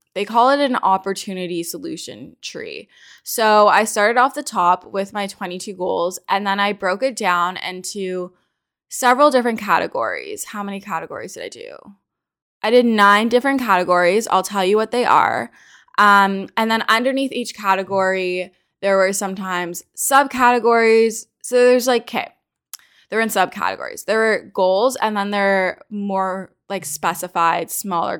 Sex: female